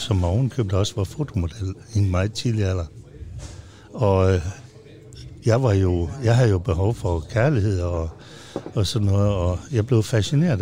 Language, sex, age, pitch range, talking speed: Danish, male, 60-79, 100-130 Hz, 155 wpm